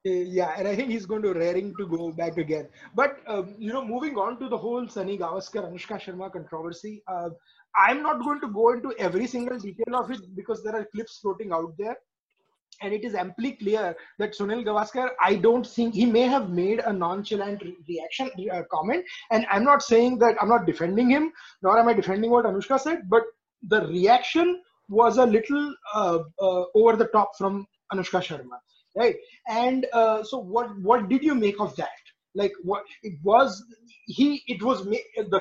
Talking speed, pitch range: 195 wpm, 195-245 Hz